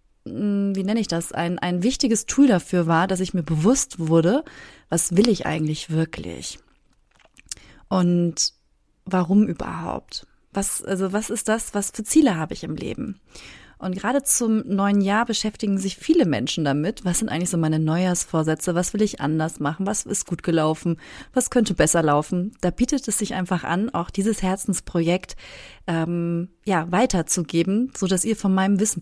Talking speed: 170 wpm